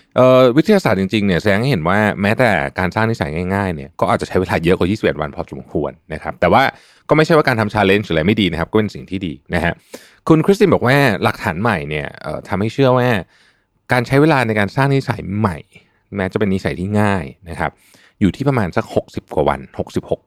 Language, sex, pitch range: Thai, male, 90-125 Hz